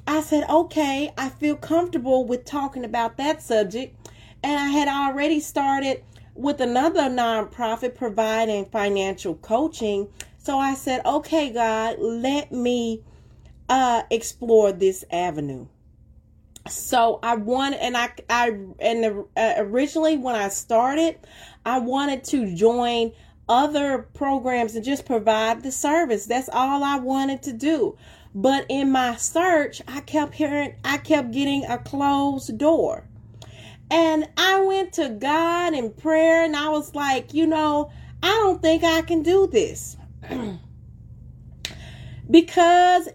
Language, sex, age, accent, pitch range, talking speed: English, female, 30-49, American, 235-310 Hz, 135 wpm